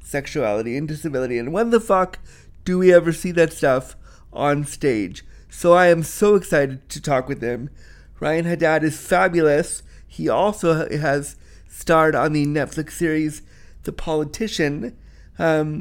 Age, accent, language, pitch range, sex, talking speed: 30-49, American, English, 145-180 Hz, male, 150 wpm